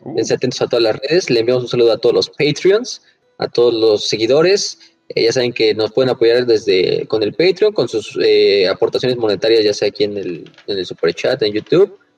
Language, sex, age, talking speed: Spanish, male, 20-39, 215 wpm